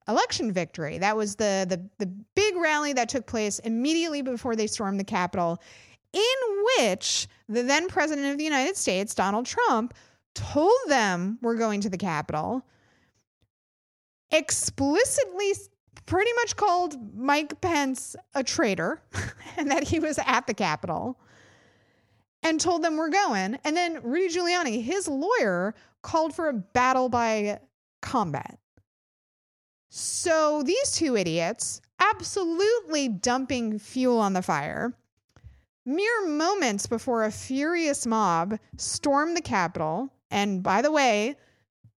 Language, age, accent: English, 30-49, American